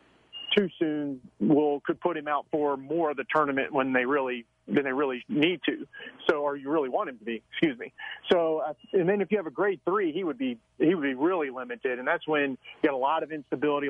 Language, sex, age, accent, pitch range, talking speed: English, male, 40-59, American, 140-165 Hz, 245 wpm